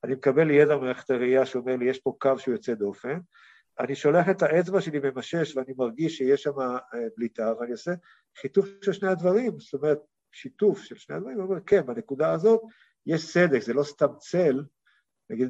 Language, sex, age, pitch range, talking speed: Hebrew, male, 50-69, 125-190 Hz, 185 wpm